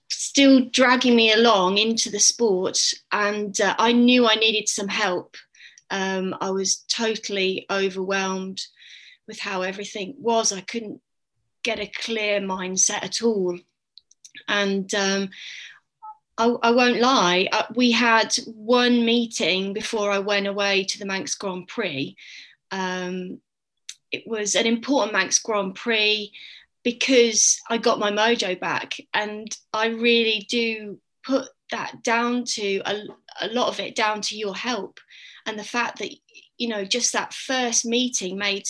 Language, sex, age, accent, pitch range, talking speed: English, female, 20-39, British, 195-240 Hz, 145 wpm